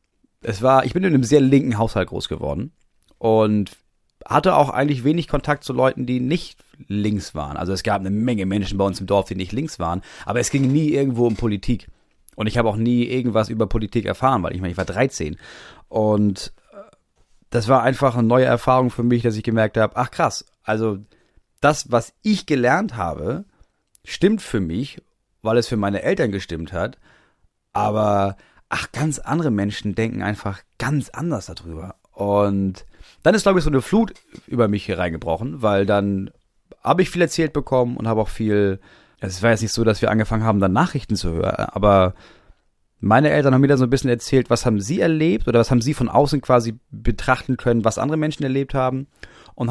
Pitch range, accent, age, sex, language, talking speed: 100-135 Hz, German, 30-49, male, German, 200 wpm